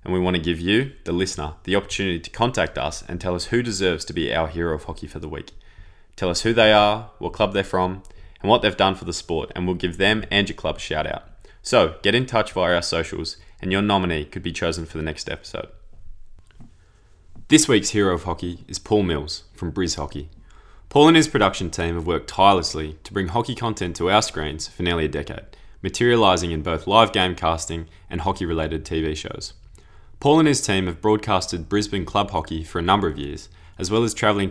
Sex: male